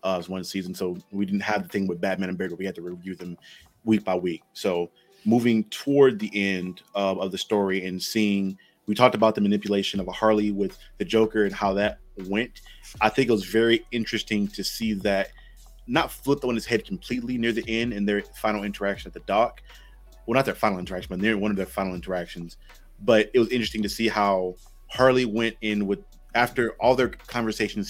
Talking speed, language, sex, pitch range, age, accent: 215 wpm, English, male, 95-110 Hz, 30-49, American